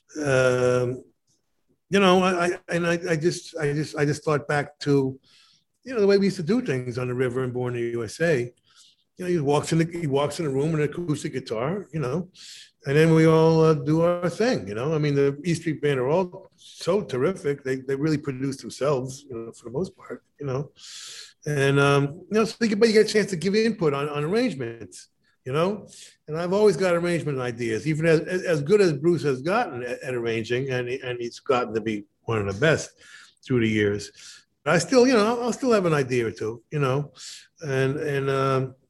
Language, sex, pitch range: English, male, 130-175 Hz